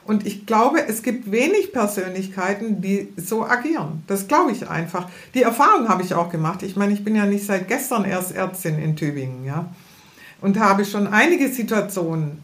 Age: 50-69